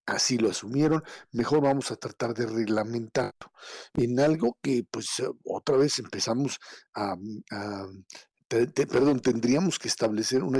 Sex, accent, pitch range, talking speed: male, Mexican, 115-140 Hz, 130 wpm